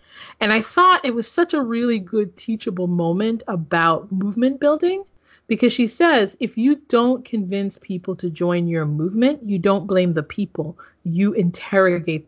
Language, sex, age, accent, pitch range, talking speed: English, female, 30-49, American, 175-235 Hz, 160 wpm